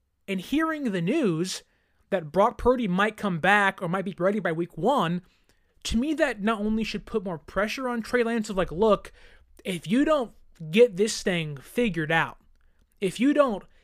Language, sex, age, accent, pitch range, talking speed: English, male, 20-39, American, 170-235 Hz, 185 wpm